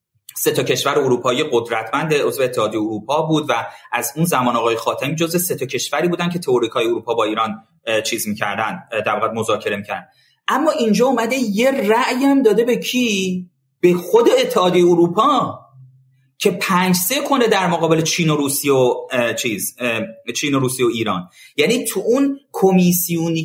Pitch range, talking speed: 150-230 Hz, 155 wpm